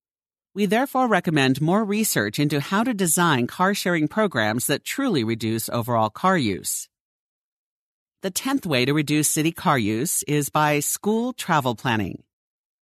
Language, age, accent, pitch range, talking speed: English, 50-69, American, 125-185 Hz, 140 wpm